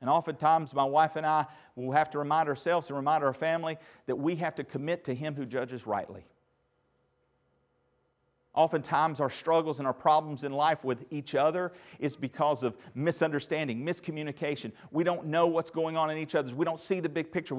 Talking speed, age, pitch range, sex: 190 wpm, 50-69, 130-160 Hz, male